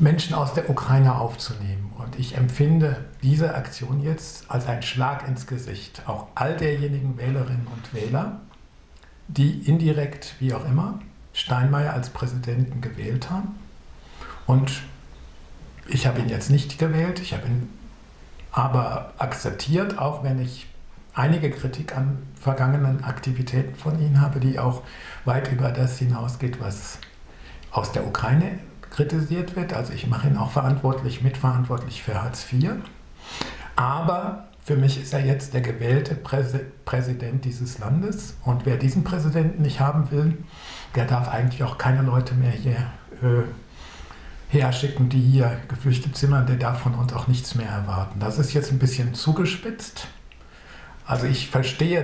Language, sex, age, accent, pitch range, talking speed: English, male, 60-79, German, 120-145 Hz, 145 wpm